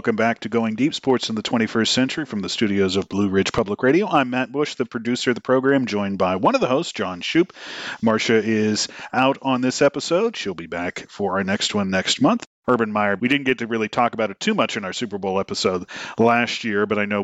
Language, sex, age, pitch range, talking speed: English, male, 40-59, 100-130 Hz, 245 wpm